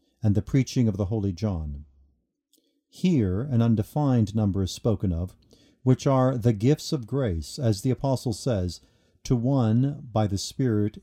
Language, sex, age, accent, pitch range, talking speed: English, male, 50-69, American, 100-130 Hz, 160 wpm